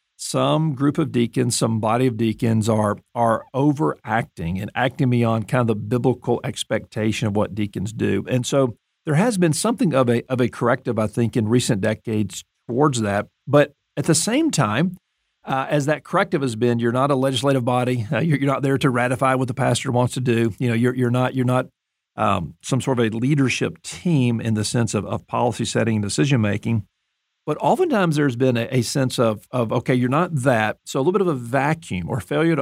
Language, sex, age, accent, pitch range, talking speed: English, male, 50-69, American, 115-145 Hz, 215 wpm